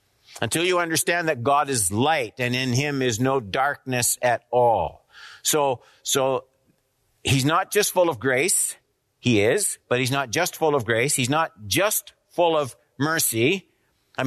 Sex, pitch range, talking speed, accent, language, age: male, 130-165 Hz, 165 wpm, American, English, 50-69